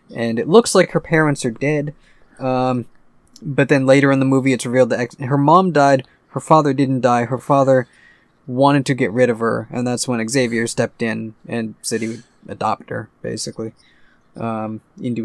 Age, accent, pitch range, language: 20-39, American, 115-135 Hz, English